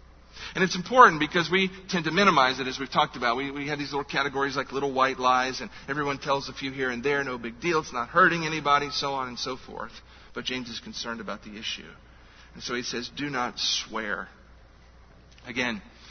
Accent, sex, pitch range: American, male, 120-150 Hz